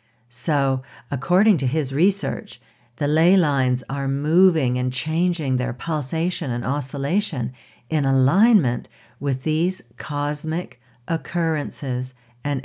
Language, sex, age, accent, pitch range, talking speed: English, female, 60-79, American, 125-160 Hz, 110 wpm